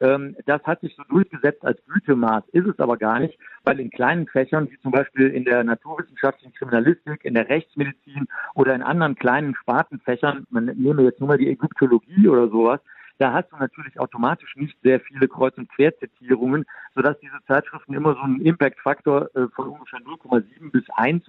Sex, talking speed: male, 180 wpm